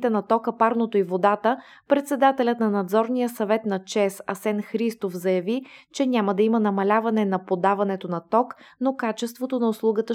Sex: female